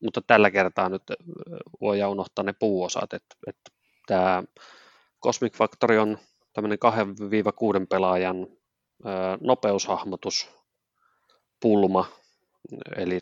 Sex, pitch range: male, 95-105 Hz